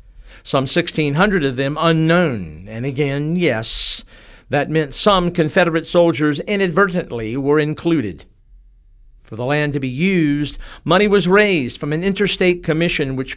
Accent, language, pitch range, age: American, English, 130-175 Hz, 50-69